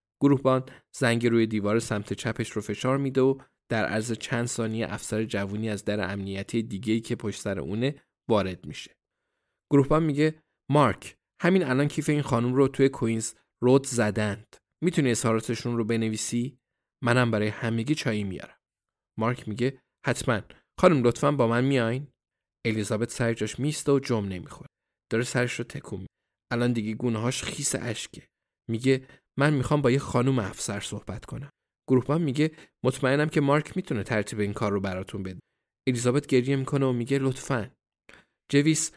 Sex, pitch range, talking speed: male, 110-135 Hz, 155 wpm